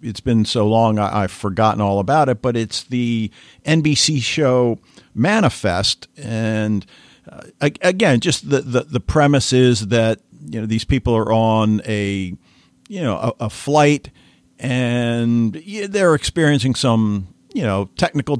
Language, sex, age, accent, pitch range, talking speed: English, male, 50-69, American, 105-125 Hz, 145 wpm